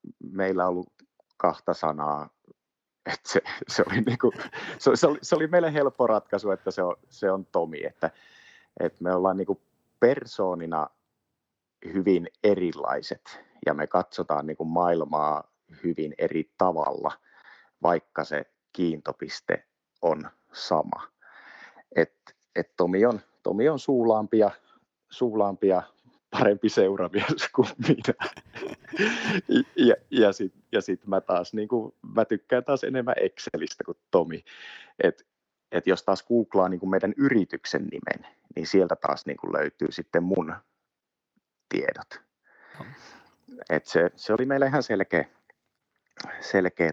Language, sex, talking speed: Finnish, male, 120 wpm